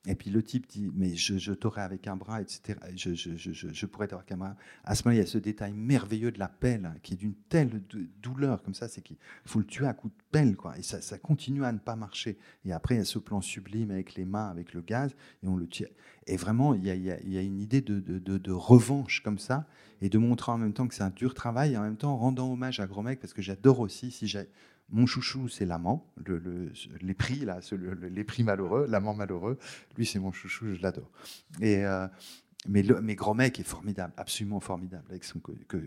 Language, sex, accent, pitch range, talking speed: French, male, French, 95-120 Hz, 260 wpm